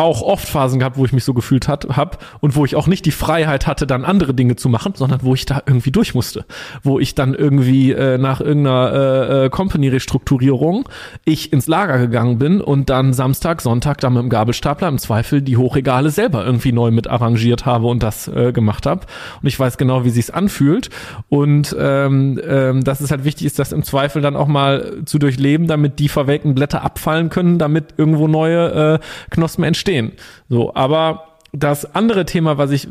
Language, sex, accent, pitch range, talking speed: German, male, German, 130-155 Hz, 200 wpm